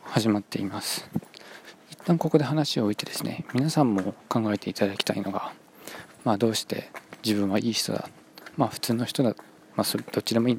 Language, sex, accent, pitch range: Japanese, male, native, 110-145 Hz